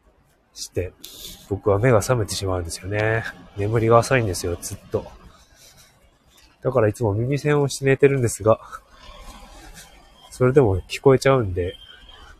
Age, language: 20-39, Japanese